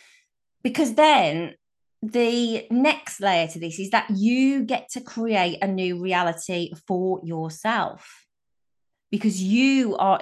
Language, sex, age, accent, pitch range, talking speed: English, female, 30-49, British, 180-245 Hz, 125 wpm